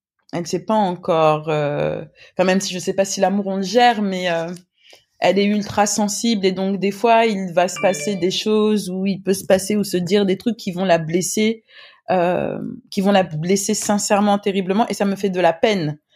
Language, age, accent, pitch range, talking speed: French, 20-39, French, 165-205 Hz, 230 wpm